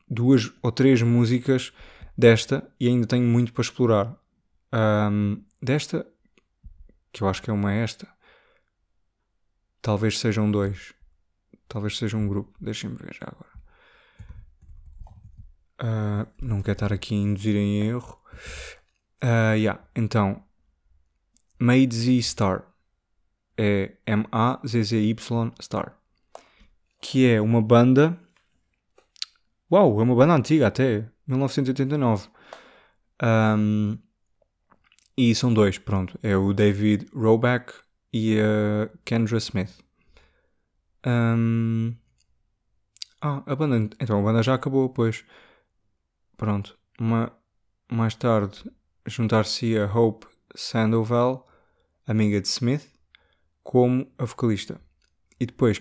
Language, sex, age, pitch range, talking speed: Portuguese, male, 20-39, 100-120 Hz, 105 wpm